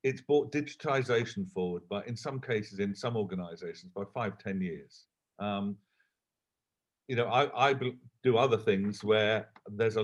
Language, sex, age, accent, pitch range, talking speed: English, male, 50-69, British, 115-170 Hz, 155 wpm